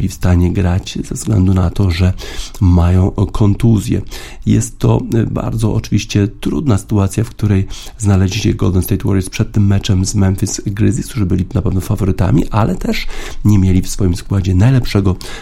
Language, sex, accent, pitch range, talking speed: Polish, male, native, 95-110 Hz, 165 wpm